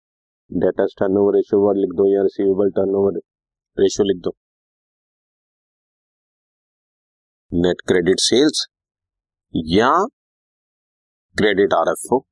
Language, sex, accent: Hindi, male, native